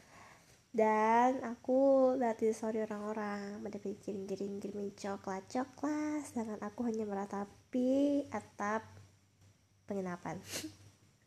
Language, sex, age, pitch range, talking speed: Indonesian, female, 20-39, 185-230 Hz, 75 wpm